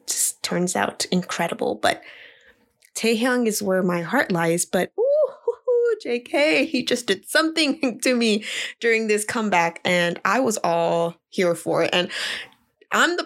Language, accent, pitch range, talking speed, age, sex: English, American, 180-260 Hz, 150 wpm, 20-39, female